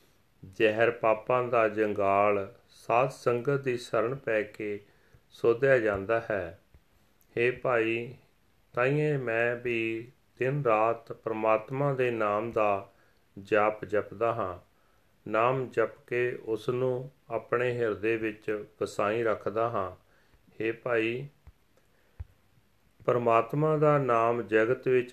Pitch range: 105-125 Hz